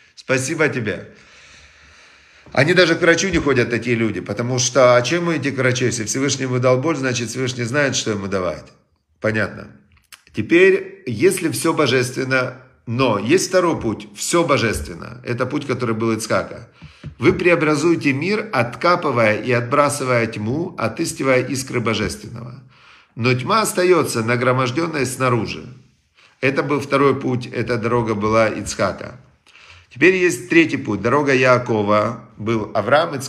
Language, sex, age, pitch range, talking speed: Russian, male, 50-69, 115-145 Hz, 135 wpm